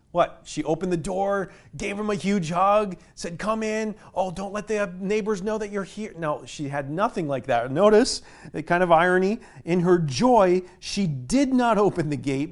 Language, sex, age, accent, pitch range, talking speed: English, male, 40-59, American, 150-210 Hz, 200 wpm